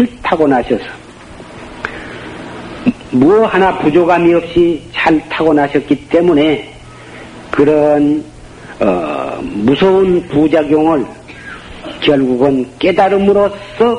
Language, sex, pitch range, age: Korean, male, 120-160 Hz, 50-69